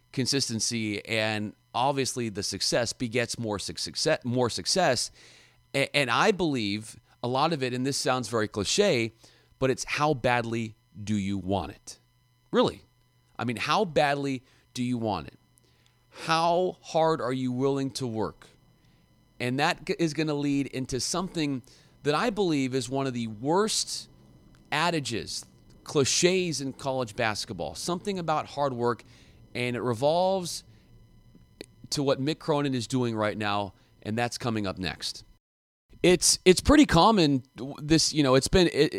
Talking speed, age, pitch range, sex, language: 150 wpm, 30-49, 110-145 Hz, male, English